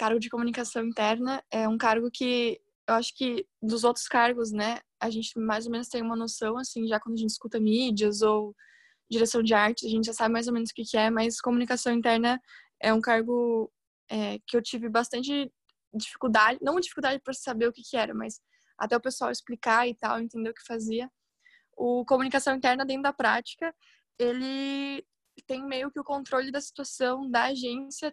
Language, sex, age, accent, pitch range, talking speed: Portuguese, female, 10-29, Brazilian, 225-260 Hz, 190 wpm